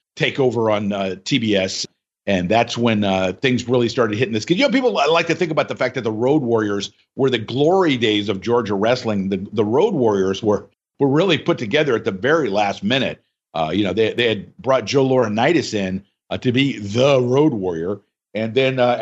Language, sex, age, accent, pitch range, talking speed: English, male, 50-69, American, 110-165 Hz, 210 wpm